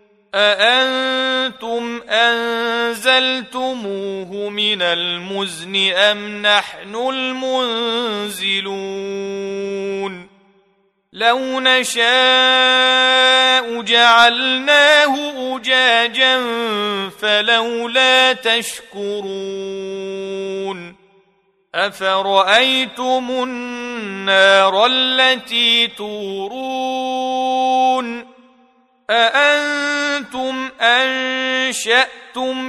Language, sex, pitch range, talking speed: Arabic, male, 195-255 Hz, 35 wpm